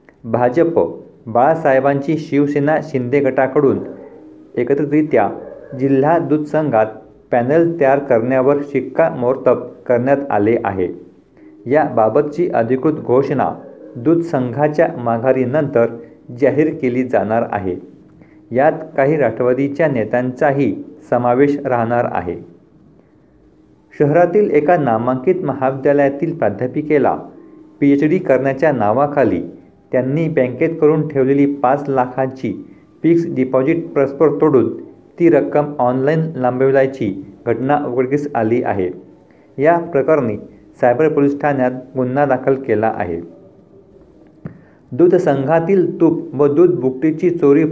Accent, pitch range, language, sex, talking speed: native, 125-155 Hz, Marathi, male, 95 wpm